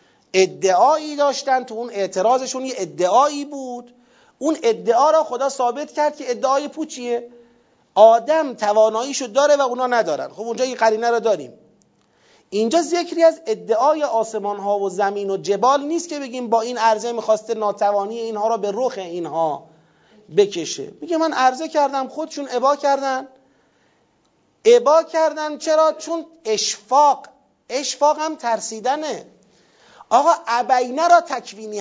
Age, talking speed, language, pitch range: 40-59, 135 wpm, Persian, 215-295 Hz